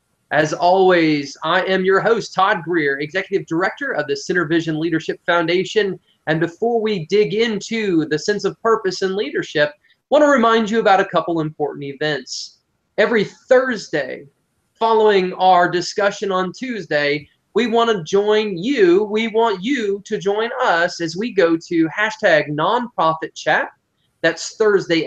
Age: 20-39